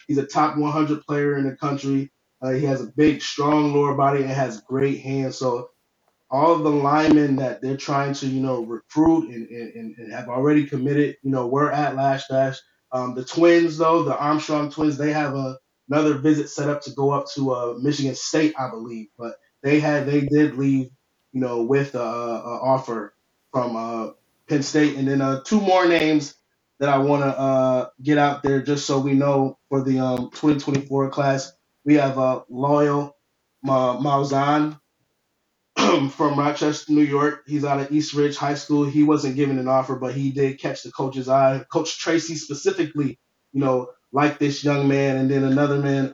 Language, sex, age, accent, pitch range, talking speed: English, male, 20-39, American, 135-150 Hz, 190 wpm